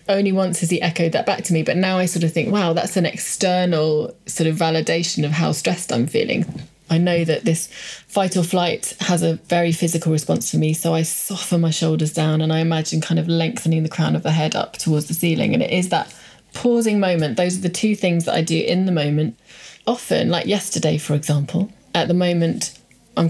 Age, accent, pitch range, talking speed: 30-49, British, 160-180 Hz, 225 wpm